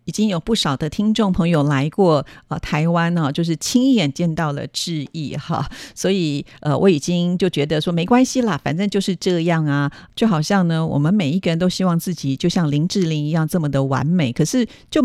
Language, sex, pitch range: Chinese, female, 150-190 Hz